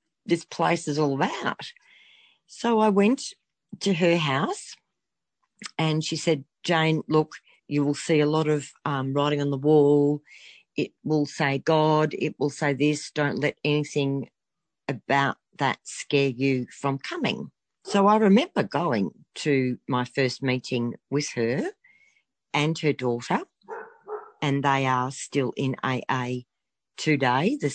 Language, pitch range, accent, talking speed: English, 140-175 Hz, Australian, 140 wpm